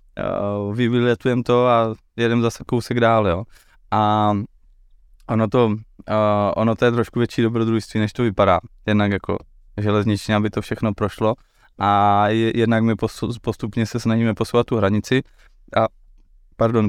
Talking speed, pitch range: 130 wpm, 100-115 Hz